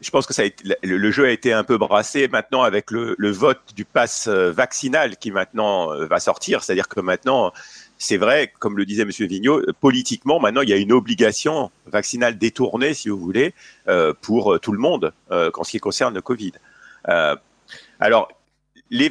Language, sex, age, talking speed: French, male, 50-69, 185 wpm